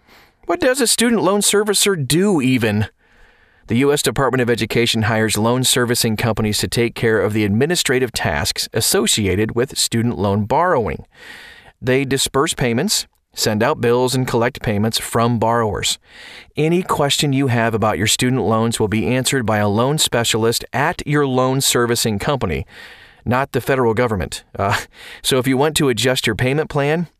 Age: 40-59